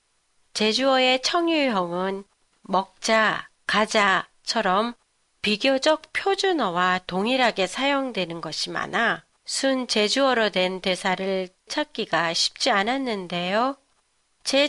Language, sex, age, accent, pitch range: Japanese, female, 30-49, Korean, 195-270 Hz